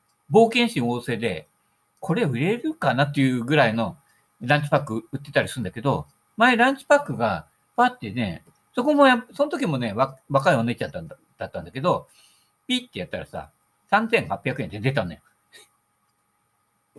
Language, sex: Japanese, male